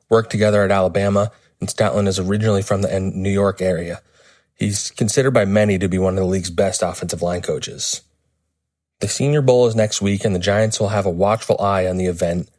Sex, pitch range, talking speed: male, 95-110 Hz, 210 wpm